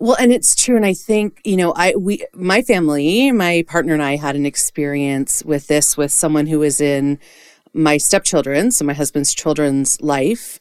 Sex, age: female, 30-49